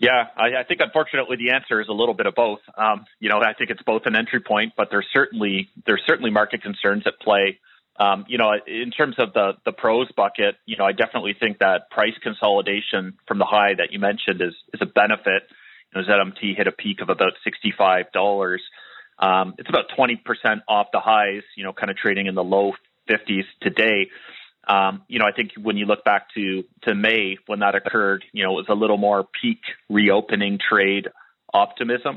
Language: English